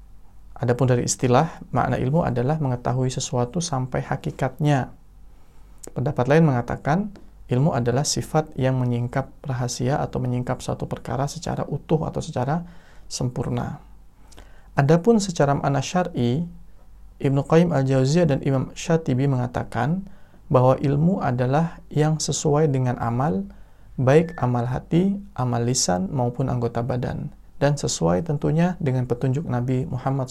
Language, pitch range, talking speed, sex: Indonesian, 120-155 Hz, 120 wpm, male